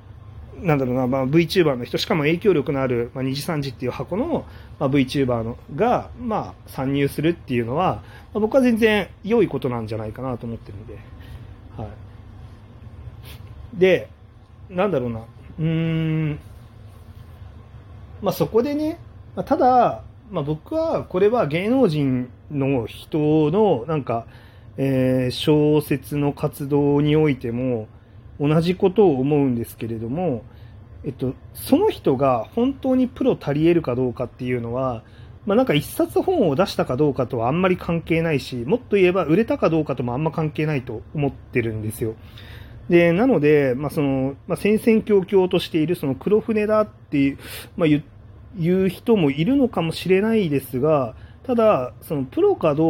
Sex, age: male, 40-59